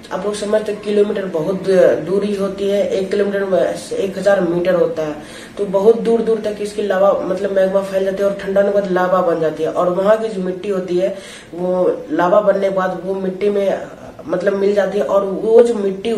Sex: female